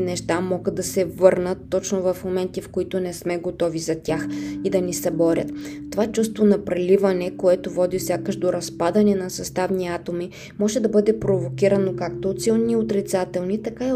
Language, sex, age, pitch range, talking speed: Bulgarian, female, 20-39, 170-195 Hz, 175 wpm